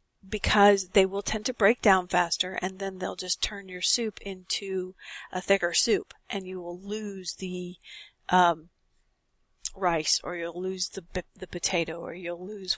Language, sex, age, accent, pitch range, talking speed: English, female, 50-69, American, 175-210 Hz, 165 wpm